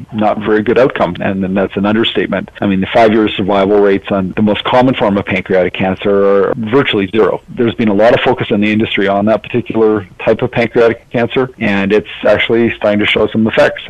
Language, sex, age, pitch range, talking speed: English, male, 40-59, 100-115 Hz, 225 wpm